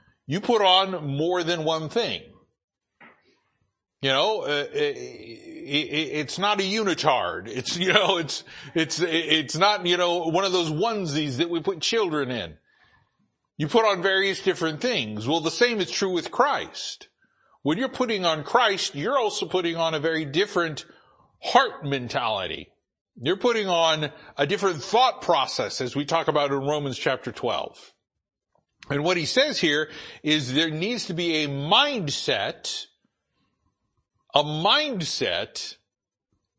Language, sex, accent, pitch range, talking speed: English, male, American, 155-200 Hz, 150 wpm